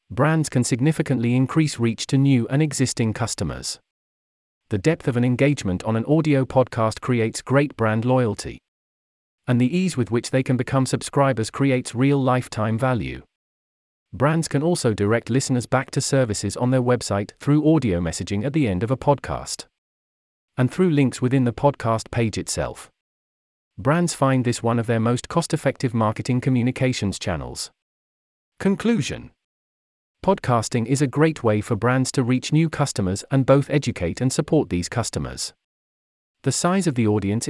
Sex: male